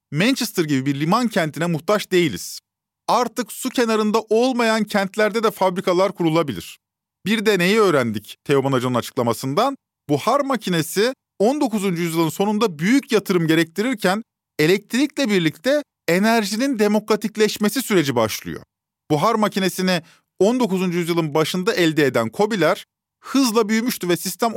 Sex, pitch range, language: male, 170-225 Hz, Turkish